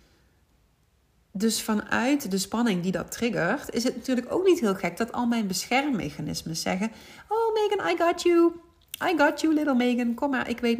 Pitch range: 185-245 Hz